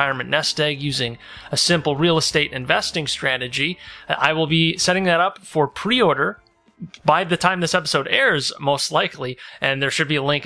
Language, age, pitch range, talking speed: English, 30-49, 130-160 Hz, 190 wpm